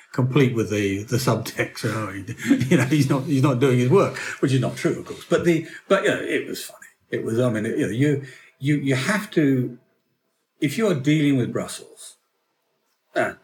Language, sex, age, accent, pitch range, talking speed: English, male, 50-69, British, 115-140 Hz, 230 wpm